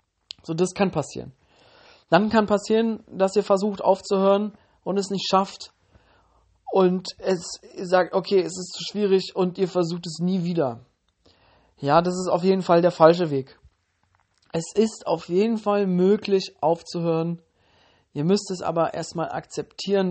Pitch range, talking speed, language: 155-190 Hz, 155 wpm, German